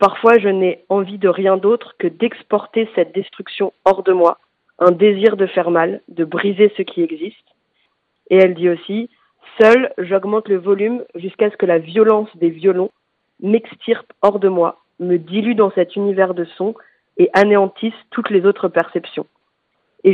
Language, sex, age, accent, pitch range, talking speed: French, female, 40-59, French, 180-215 Hz, 170 wpm